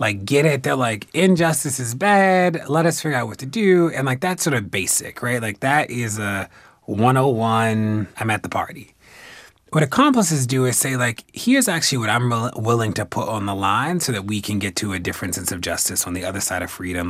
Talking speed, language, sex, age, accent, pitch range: 225 wpm, English, male, 30-49, American, 110-165 Hz